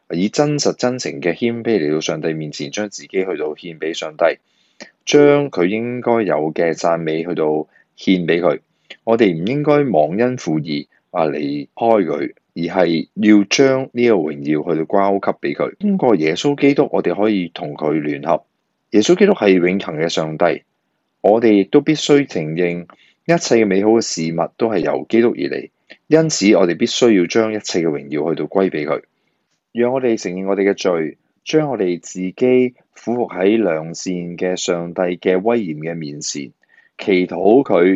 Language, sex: Chinese, male